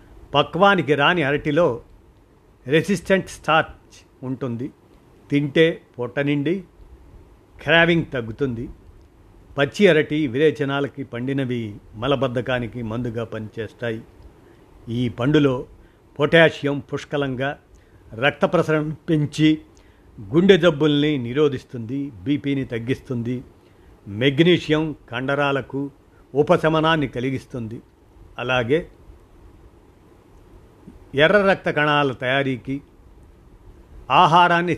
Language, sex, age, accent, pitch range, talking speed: Telugu, male, 50-69, native, 110-155 Hz, 65 wpm